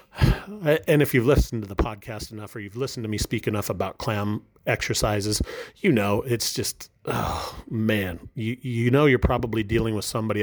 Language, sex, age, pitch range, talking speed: English, male, 30-49, 105-125 Hz, 185 wpm